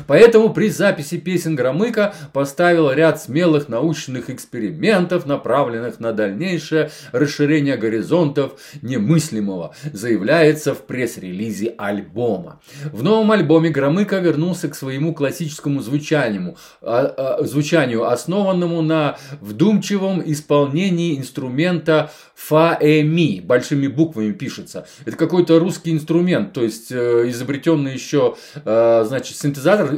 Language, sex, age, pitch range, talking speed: Russian, male, 20-39, 135-165 Hz, 95 wpm